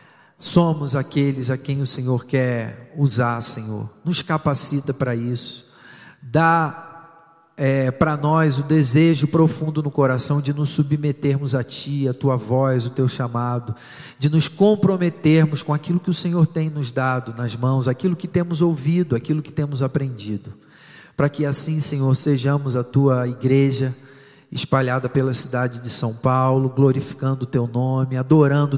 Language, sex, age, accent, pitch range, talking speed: Portuguese, male, 40-59, Brazilian, 125-150 Hz, 150 wpm